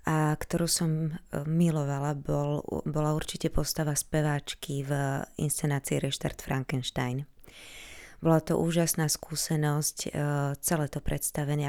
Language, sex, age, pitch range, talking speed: Slovak, female, 20-39, 140-160 Hz, 105 wpm